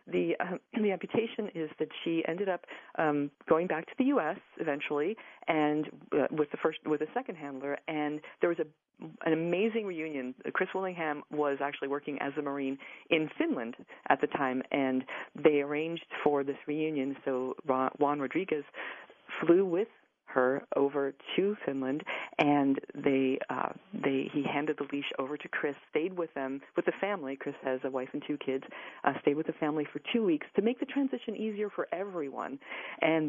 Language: English